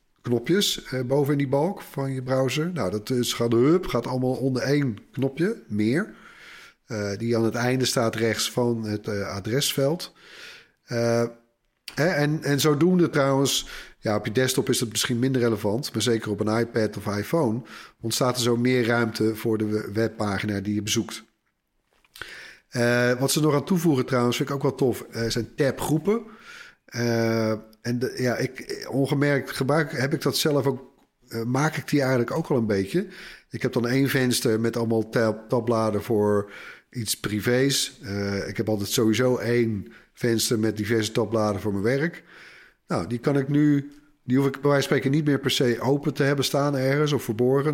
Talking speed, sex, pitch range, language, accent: 185 wpm, male, 115-140 Hz, Dutch, Dutch